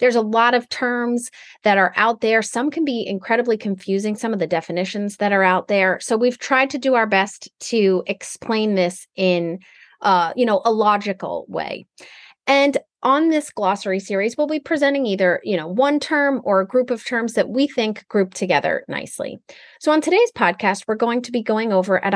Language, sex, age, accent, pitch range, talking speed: English, female, 30-49, American, 190-255 Hz, 200 wpm